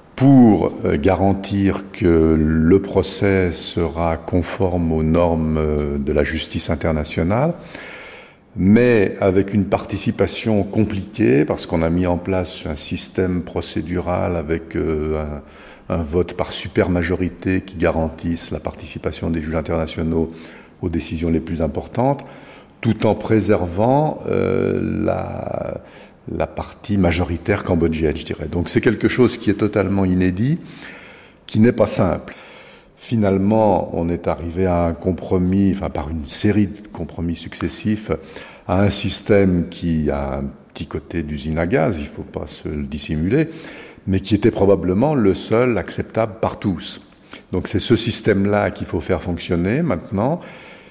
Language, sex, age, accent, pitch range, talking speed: French, male, 50-69, French, 80-105 Hz, 140 wpm